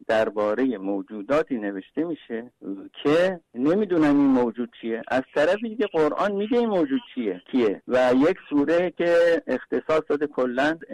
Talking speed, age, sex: 135 wpm, 60-79, male